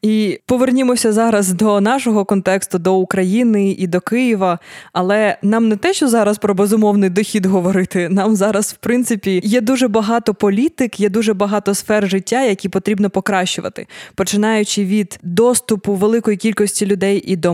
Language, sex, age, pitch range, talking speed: Ukrainian, female, 20-39, 190-220 Hz, 155 wpm